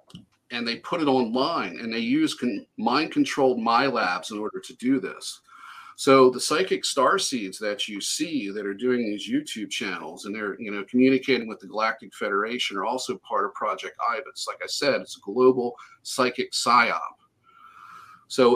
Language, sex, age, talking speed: English, male, 40-59, 180 wpm